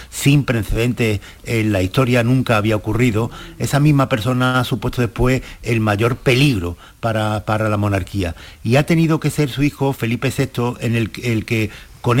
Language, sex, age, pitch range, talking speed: Spanish, male, 50-69, 110-130 Hz, 170 wpm